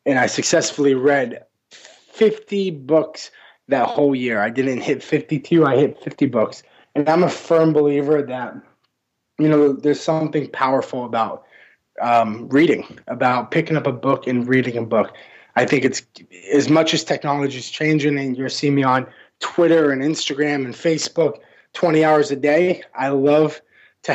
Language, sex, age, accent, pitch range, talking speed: English, male, 20-39, American, 135-160 Hz, 165 wpm